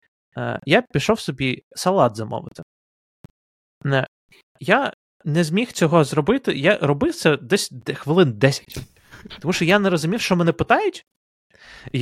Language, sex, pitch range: Ukrainian, male, 130-185 Hz